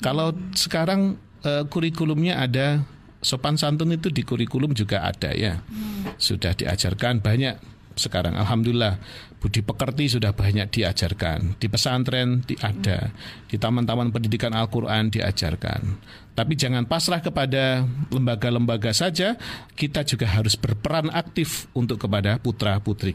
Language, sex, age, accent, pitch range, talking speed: Indonesian, male, 50-69, native, 105-145 Hz, 115 wpm